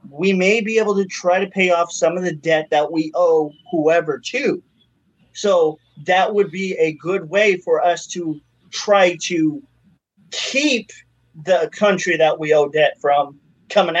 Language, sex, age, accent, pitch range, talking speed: English, male, 30-49, American, 165-195 Hz, 165 wpm